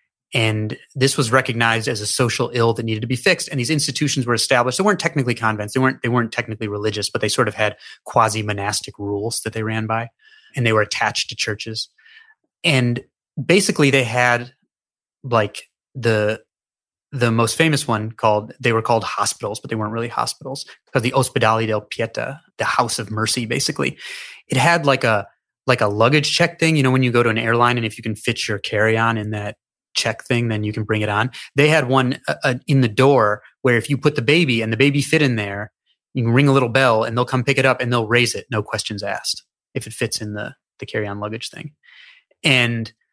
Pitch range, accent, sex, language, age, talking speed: 110-140 Hz, American, male, English, 30-49, 225 wpm